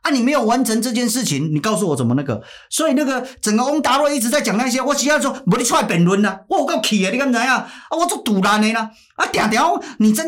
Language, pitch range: Chinese, 205-285 Hz